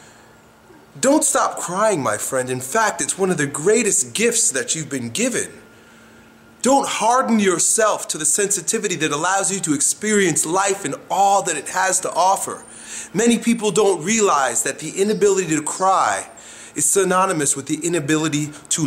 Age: 30-49